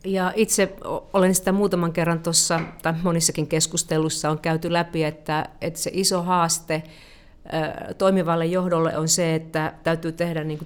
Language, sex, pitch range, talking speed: Finnish, female, 155-175 Hz, 140 wpm